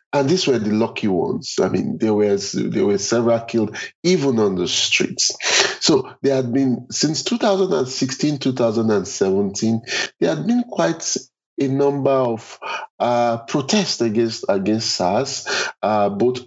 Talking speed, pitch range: 140 wpm, 110-150 Hz